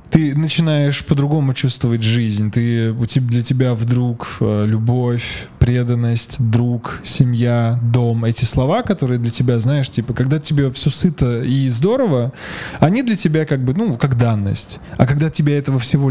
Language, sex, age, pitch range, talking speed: Russian, male, 20-39, 120-145 Hz, 150 wpm